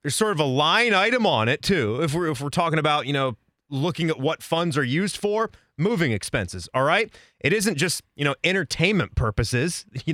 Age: 30-49